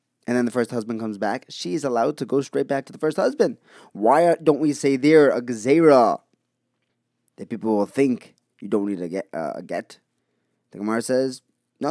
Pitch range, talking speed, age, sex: 115-160 Hz, 190 wpm, 20-39, male